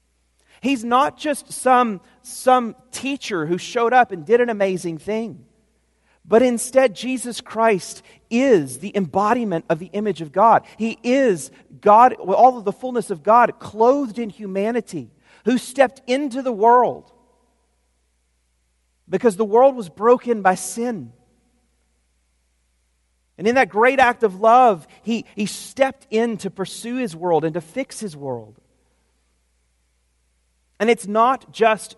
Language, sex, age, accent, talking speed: English, male, 40-59, American, 140 wpm